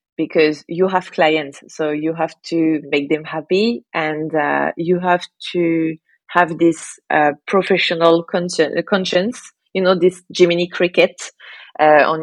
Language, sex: English, female